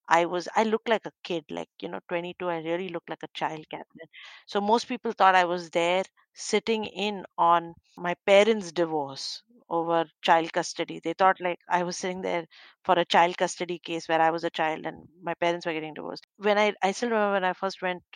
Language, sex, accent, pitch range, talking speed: English, female, Indian, 170-210 Hz, 220 wpm